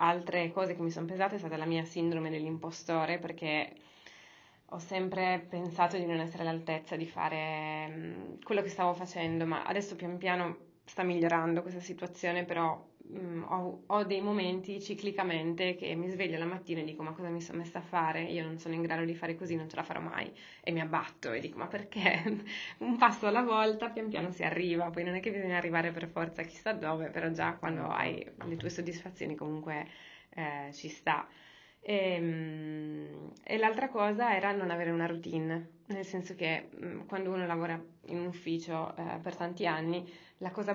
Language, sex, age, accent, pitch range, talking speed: Italian, female, 20-39, native, 160-185 Hz, 185 wpm